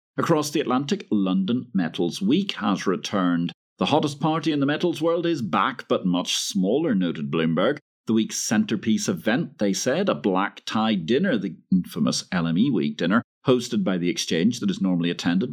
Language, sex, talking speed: English, male, 170 wpm